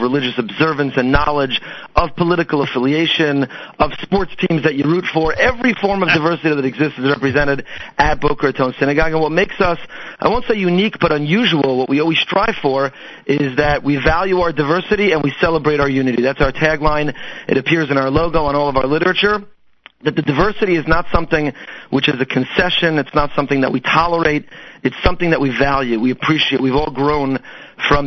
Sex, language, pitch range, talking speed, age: male, English, 140-165 Hz, 195 wpm, 40-59